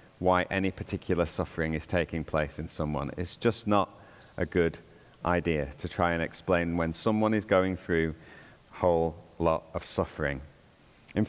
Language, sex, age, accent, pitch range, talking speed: English, male, 30-49, British, 85-115 Hz, 160 wpm